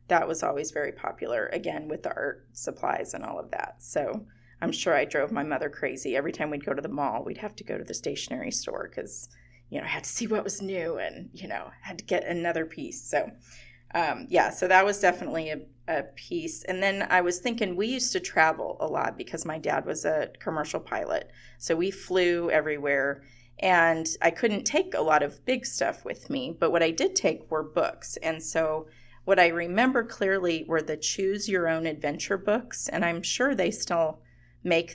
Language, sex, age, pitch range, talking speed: English, female, 30-49, 160-195 Hz, 215 wpm